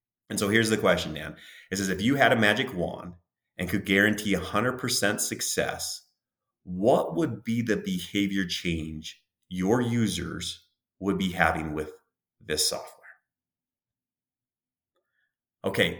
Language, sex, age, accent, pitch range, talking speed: English, male, 30-49, American, 90-135 Hz, 130 wpm